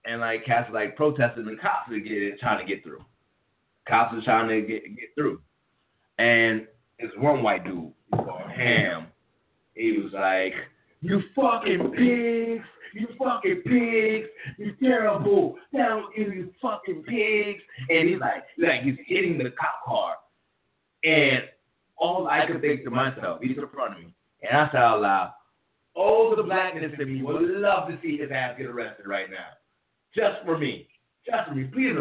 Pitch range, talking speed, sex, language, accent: 125-200 Hz, 170 wpm, male, English, American